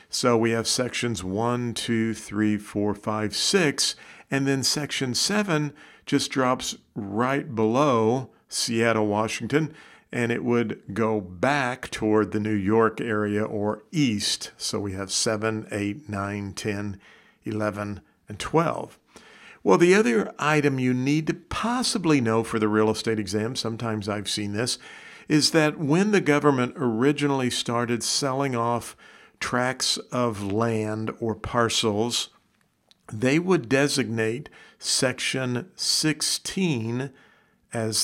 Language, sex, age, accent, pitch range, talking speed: English, male, 50-69, American, 110-135 Hz, 125 wpm